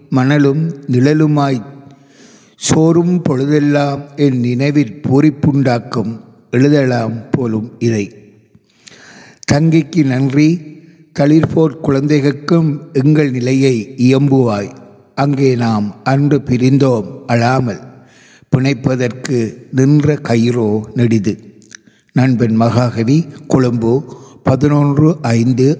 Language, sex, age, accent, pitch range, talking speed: Tamil, male, 60-79, native, 120-145 Hz, 70 wpm